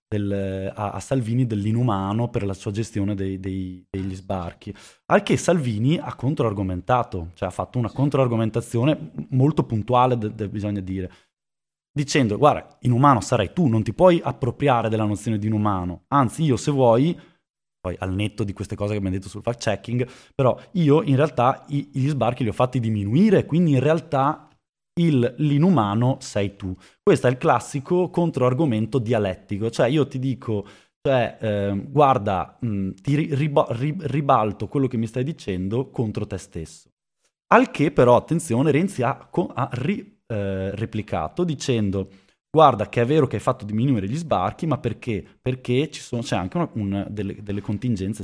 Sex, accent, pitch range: male, native, 100-140 Hz